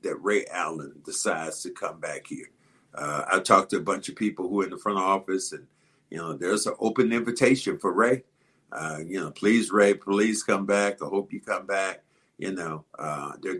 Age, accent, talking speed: 50-69, American, 220 wpm